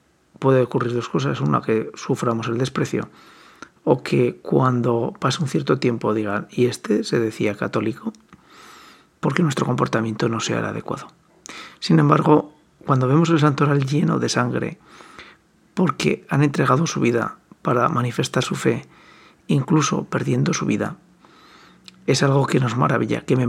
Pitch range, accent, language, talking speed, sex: 120-155 Hz, Spanish, Spanish, 150 wpm, male